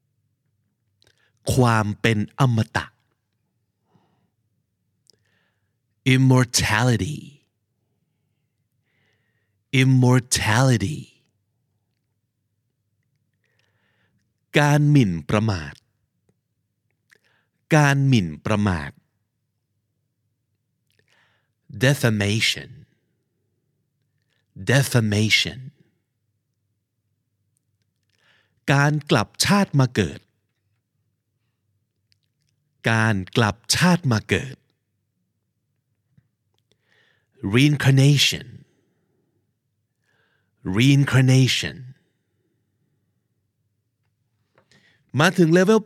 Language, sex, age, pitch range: Thai, male, 50-69, 105-135 Hz